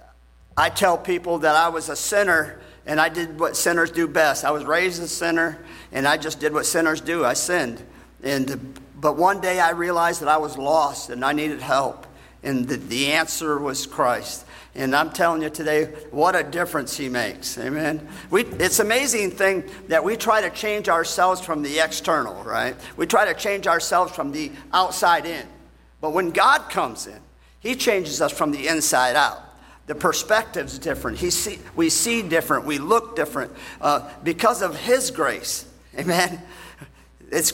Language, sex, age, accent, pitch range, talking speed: English, male, 50-69, American, 145-185 Hz, 180 wpm